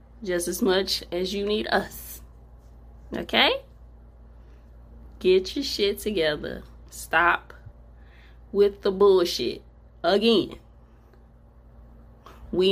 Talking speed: 85 wpm